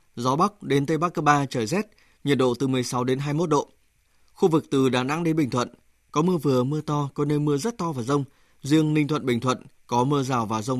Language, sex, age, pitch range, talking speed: Vietnamese, male, 20-39, 130-155 Hz, 280 wpm